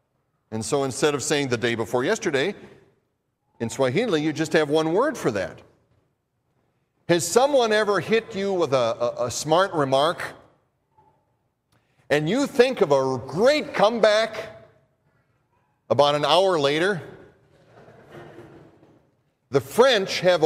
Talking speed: 125 wpm